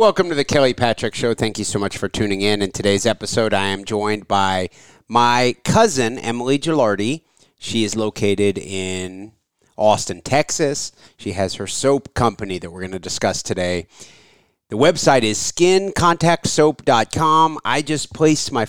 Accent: American